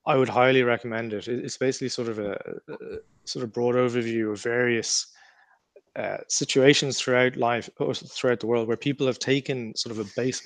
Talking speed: 190 wpm